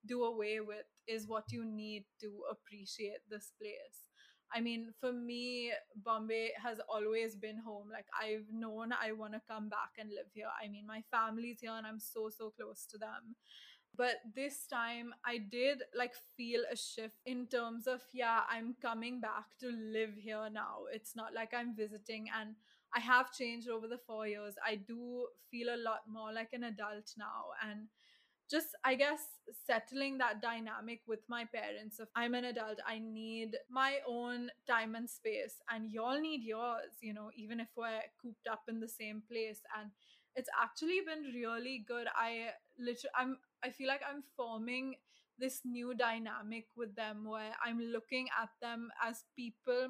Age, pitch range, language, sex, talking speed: 20-39, 220-245 Hz, English, female, 180 wpm